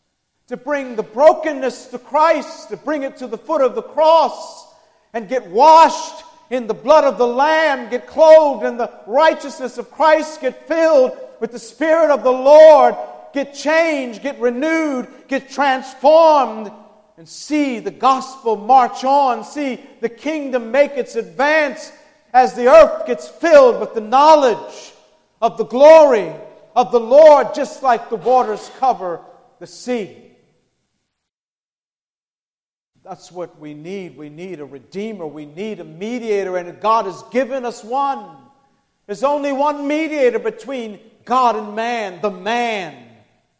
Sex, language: male, English